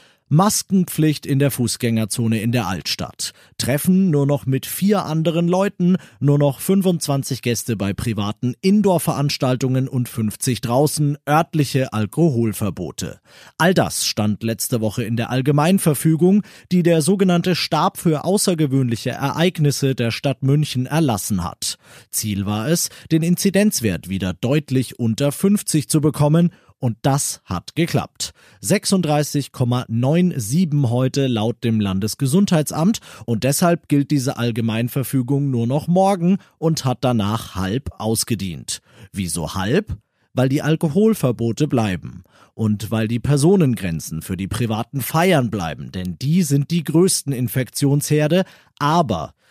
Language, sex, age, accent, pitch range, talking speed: German, male, 40-59, German, 115-160 Hz, 120 wpm